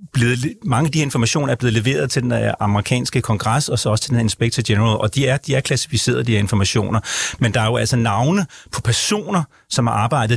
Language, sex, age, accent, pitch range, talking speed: Danish, male, 30-49, native, 115-145 Hz, 235 wpm